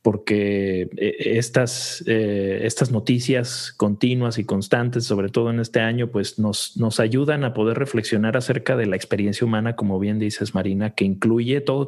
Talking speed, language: 160 wpm, Spanish